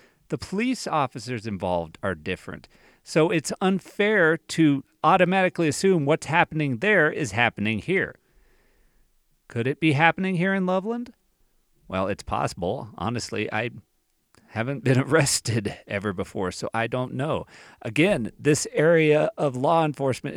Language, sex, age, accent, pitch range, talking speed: English, male, 40-59, American, 120-165 Hz, 135 wpm